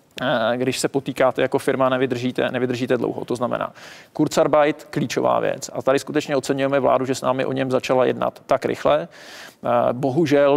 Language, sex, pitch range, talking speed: Czech, male, 130-145 Hz, 160 wpm